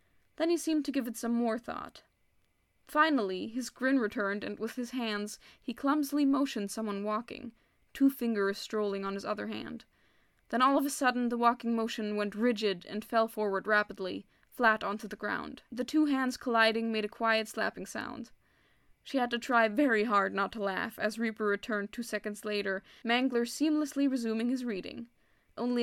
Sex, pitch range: female, 205-255 Hz